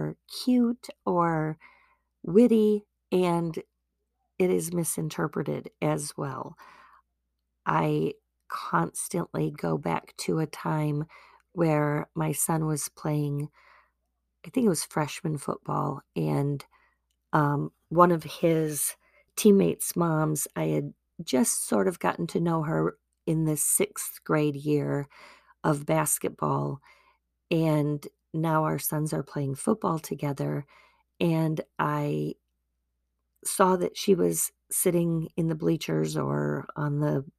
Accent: American